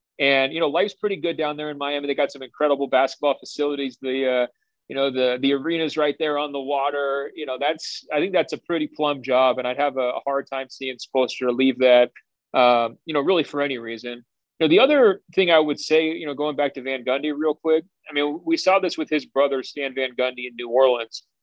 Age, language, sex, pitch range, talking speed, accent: 40-59, English, male, 135-155 Hz, 240 wpm, American